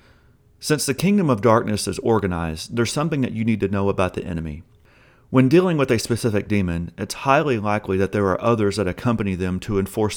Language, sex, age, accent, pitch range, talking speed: English, male, 40-59, American, 95-120 Hz, 205 wpm